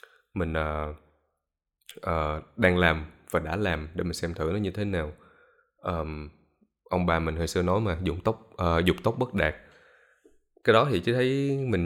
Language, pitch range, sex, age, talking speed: Vietnamese, 85-105 Hz, male, 20-39, 185 wpm